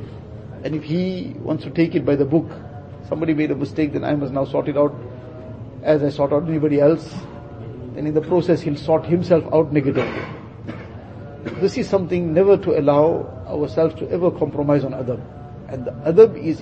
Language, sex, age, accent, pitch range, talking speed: English, male, 60-79, Indian, 125-165 Hz, 190 wpm